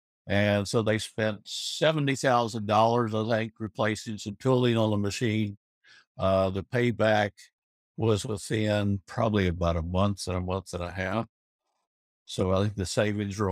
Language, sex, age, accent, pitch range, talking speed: English, male, 60-79, American, 95-110 Hz, 150 wpm